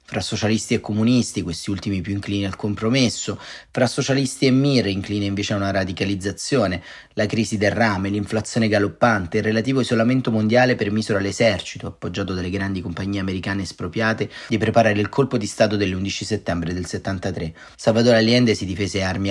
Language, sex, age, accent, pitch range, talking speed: Italian, male, 30-49, native, 95-120 Hz, 160 wpm